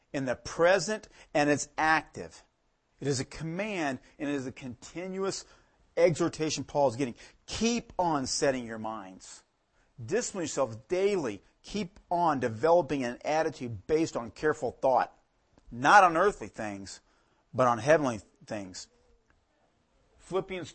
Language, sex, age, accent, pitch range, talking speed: English, male, 40-59, American, 120-175 Hz, 130 wpm